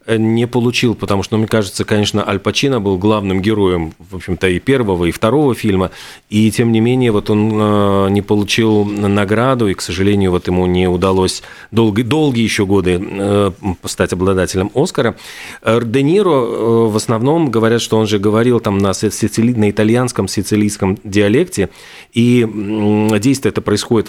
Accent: native